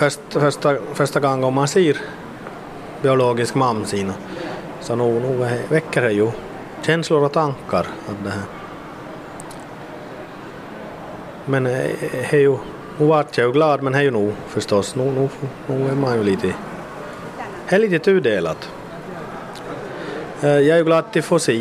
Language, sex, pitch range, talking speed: Swedish, male, 115-150 Hz, 140 wpm